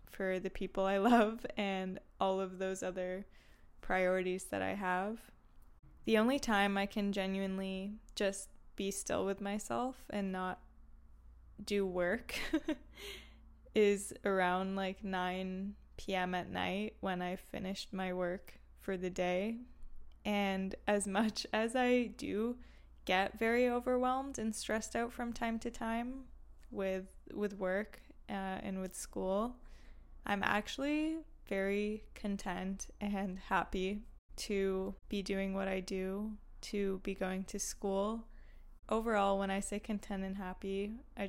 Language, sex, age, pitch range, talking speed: English, female, 10-29, 190-215 Hz, 130 wpm